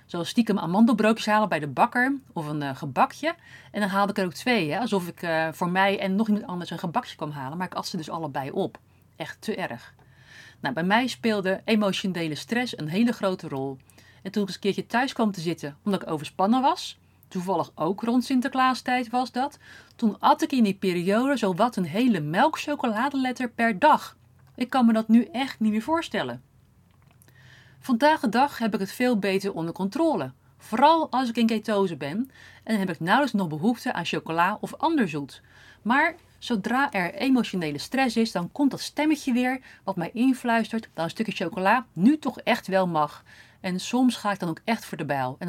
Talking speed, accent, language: 200 wpm, Dutch, Dutch